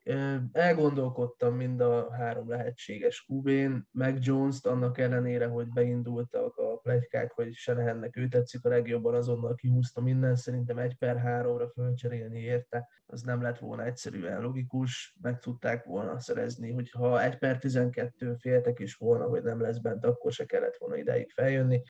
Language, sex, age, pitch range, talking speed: Hungarian, male, 20-39, 120-135 Hz, 155 wpm